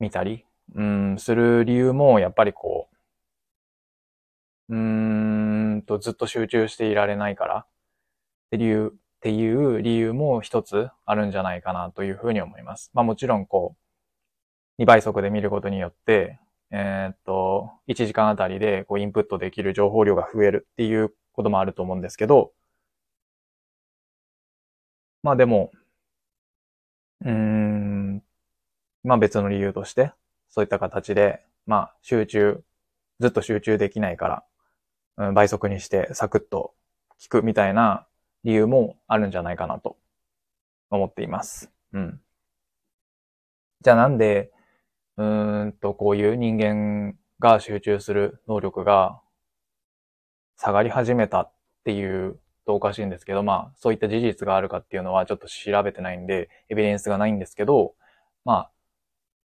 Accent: native